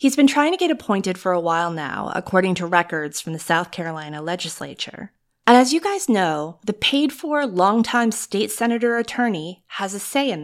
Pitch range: 175-230 Hz